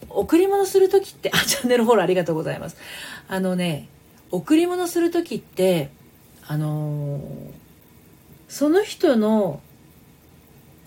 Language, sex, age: Japanese, female, 40-59